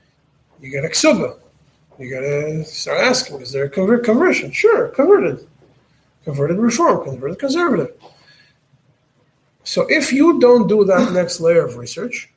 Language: English